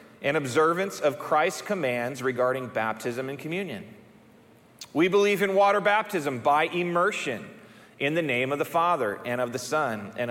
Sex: male